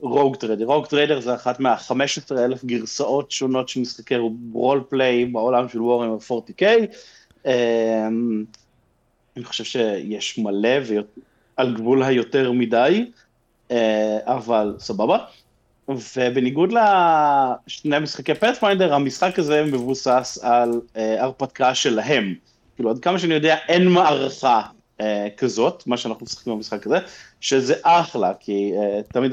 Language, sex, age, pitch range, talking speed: Hebrew, male, 30-49, 120-170 Hz, 125 wpm